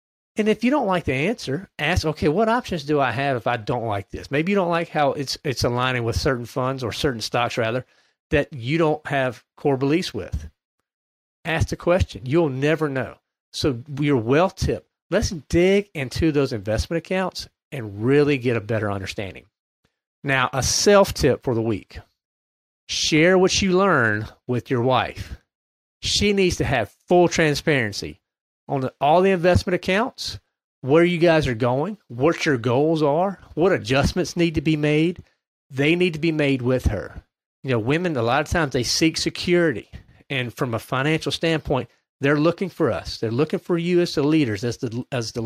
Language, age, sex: English, 40-59, male